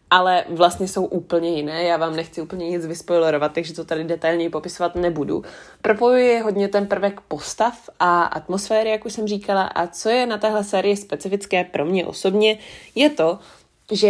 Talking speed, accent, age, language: 180 wpm, native, 20-39, Czech